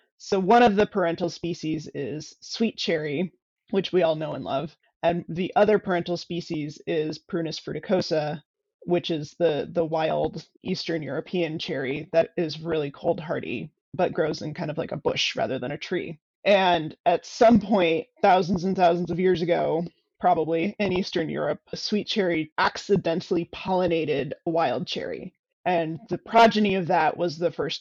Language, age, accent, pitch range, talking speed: English, 20-39, American, 165-200 Hz, 170 wpm